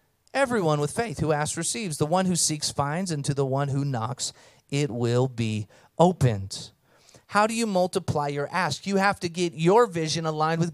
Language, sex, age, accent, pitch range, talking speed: English, male, 30-49, American, 135-205 Hz, 195 wpm